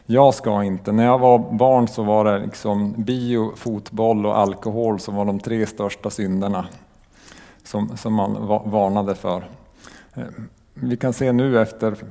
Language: Swedish